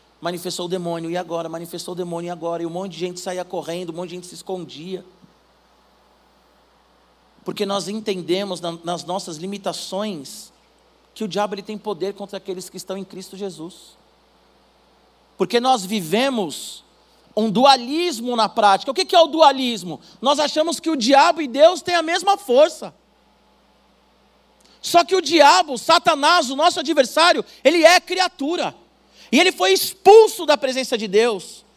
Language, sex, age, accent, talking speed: Portuguese, male, 40-59, Brazilian, 155 wpm